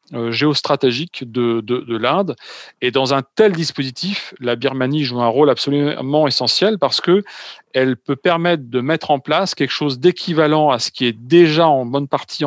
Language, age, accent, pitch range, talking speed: French, 40-59, French, 120-150 Hz, 175 wpm